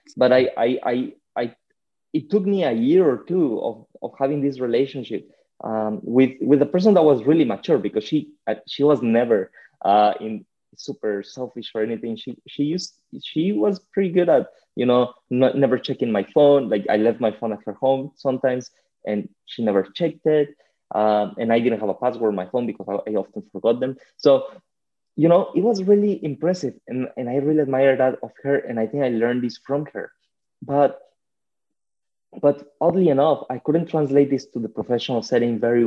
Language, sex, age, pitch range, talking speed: English, male, 20-39, 120-165 Hz, 195 wpm